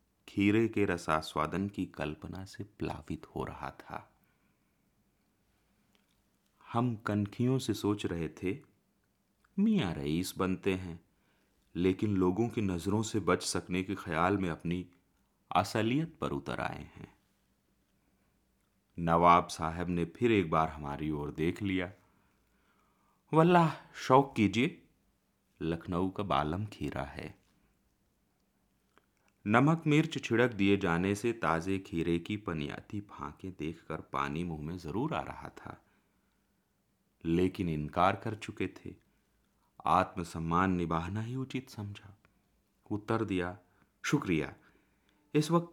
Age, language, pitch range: 30-49, Hindi, 85-105 Hz